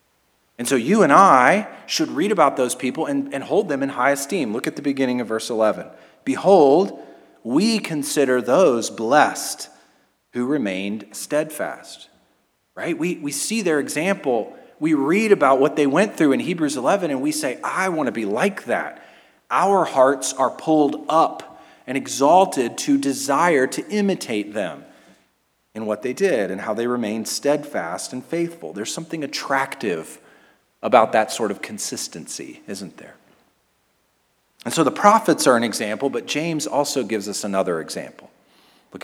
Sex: male